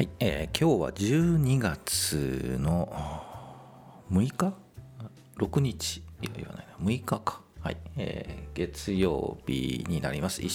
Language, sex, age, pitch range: Japanese, male, 40-59, 85-125 Hz